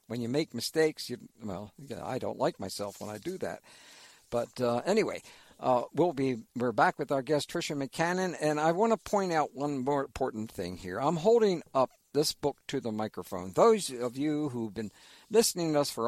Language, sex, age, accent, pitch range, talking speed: English, male, 60-79, American, 120-175 Hz, 215 wpm